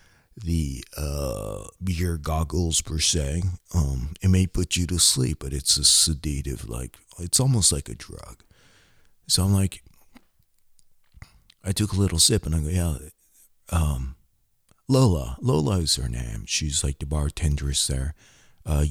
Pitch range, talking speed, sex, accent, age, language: 75-90 Hz, 150 wpm, male, American, 50-69, English